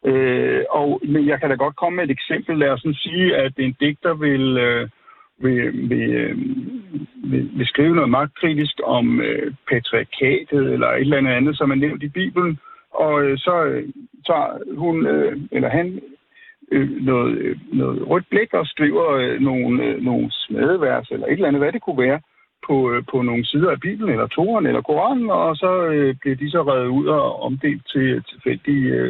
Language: Danish